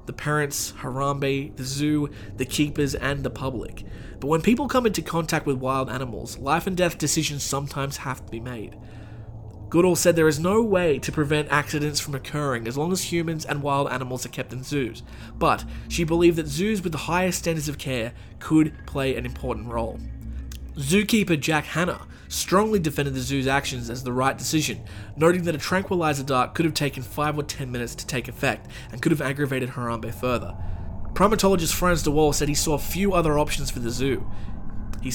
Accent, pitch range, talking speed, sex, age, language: Australian, 120-160 Hz, 190 wpm, male, 20-39, English